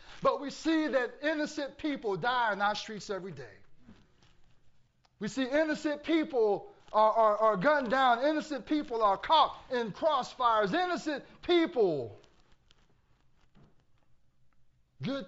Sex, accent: male, American